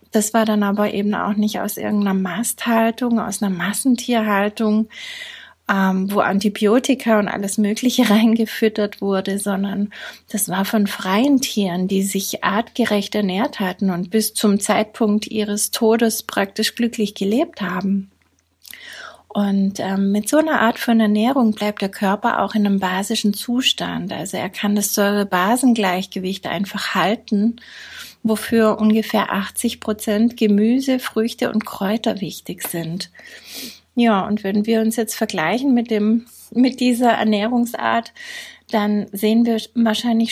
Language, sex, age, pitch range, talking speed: German, female, 30-49, 205-235 Hz, 135 wpm